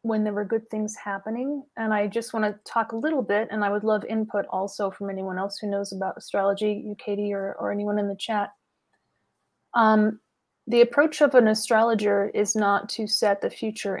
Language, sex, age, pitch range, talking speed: English, female, 30-49, 200-225 Hz, 205 wpm